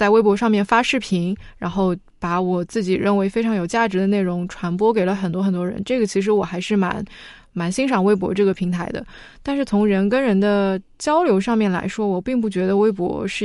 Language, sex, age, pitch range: Chinese, female, 20-39, 190-220 Hz